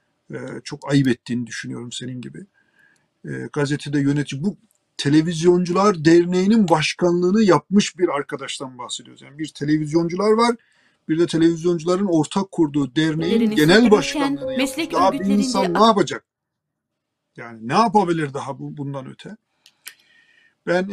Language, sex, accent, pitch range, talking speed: Turkish, male, native, 140-170 Hz, 125 wpm